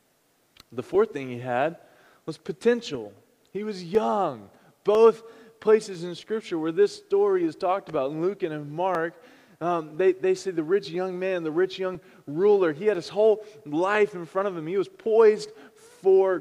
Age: 20-39